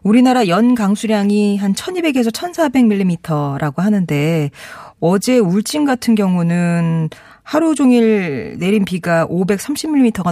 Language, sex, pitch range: Korean, female, 160-230 Hz